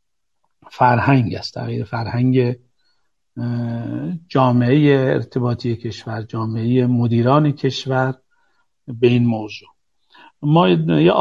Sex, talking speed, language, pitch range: male, 75 wpm, Persian, 115-140 Hz